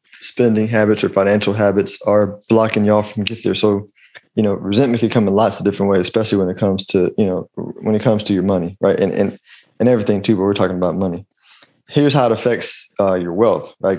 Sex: male